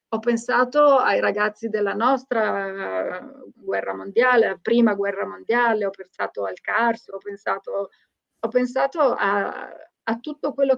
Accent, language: native, Italian